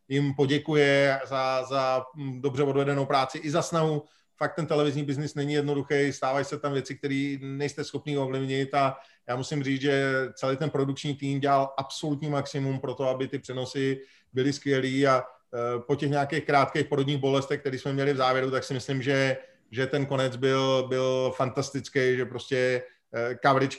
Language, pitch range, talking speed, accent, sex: Czech, 130-145 Hz, 170 wpm, native, male